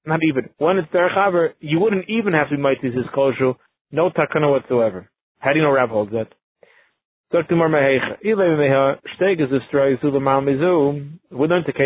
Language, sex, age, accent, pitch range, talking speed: English, male, 30-49, American, 140-180 Hz, 135 wpm